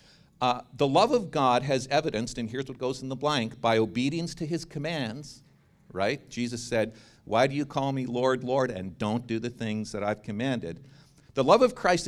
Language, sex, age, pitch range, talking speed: English, male, 50-69, 115-145 Hz, 205 wpm